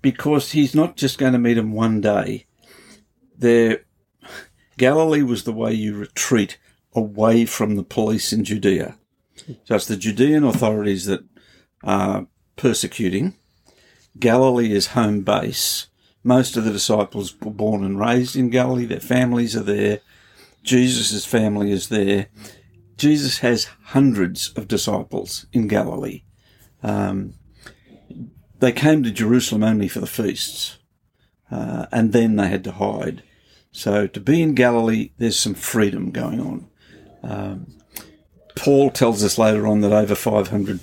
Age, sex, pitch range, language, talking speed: 50-69, male, 105-125 Hz, English, 140 wpm